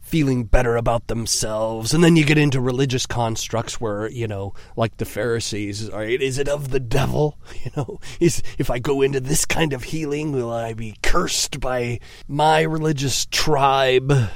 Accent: American